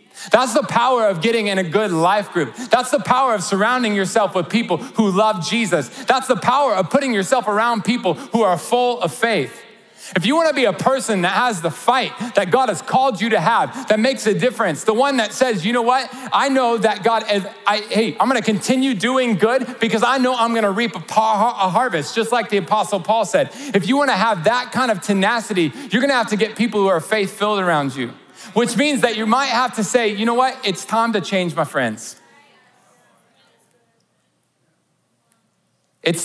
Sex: male